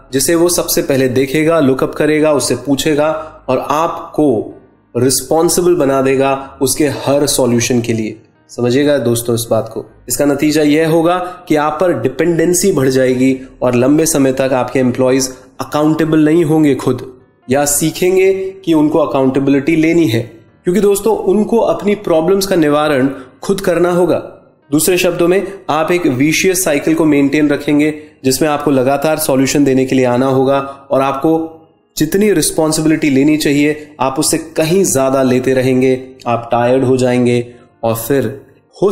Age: 20-39